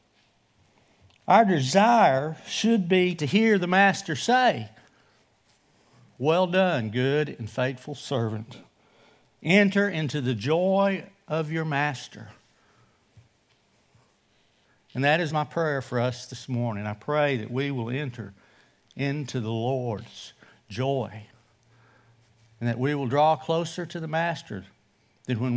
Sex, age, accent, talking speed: male, 60-79, American, 120 wpm